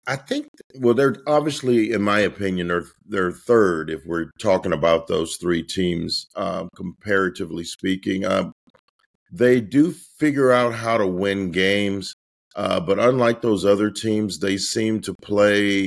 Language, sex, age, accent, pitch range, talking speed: English, male, 50-69, American, 95-115 Hz, 150 wpm